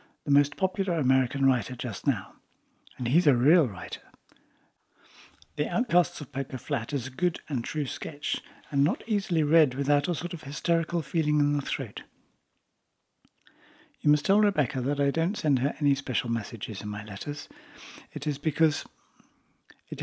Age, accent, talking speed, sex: 60-79, British, 165 wpm, male